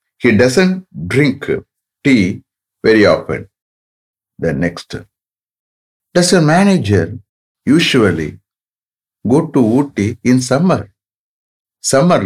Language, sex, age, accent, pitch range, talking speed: English, male, 60-79, Indian, 95-135 Hz, 90 wpm